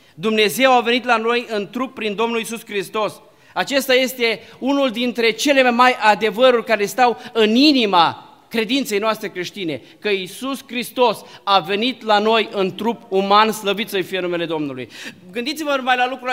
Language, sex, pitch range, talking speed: Romanian, male, 210-270 Hz, 165 wpm